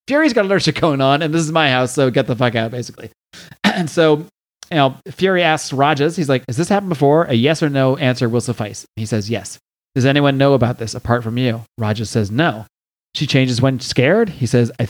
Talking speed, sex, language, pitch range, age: 235 wpm, male, English, 120-150 Hz, 30-49